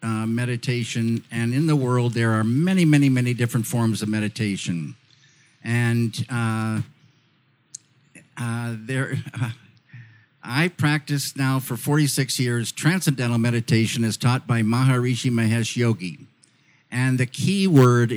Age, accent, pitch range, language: 50-69, American, 120-165 Hz, English